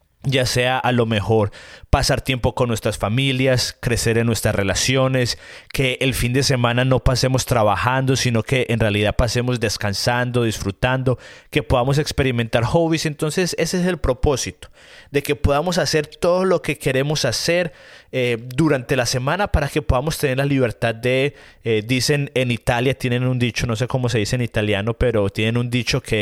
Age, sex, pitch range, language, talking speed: 30-49, male, 115-140 Hz, Spanish, 175 wpm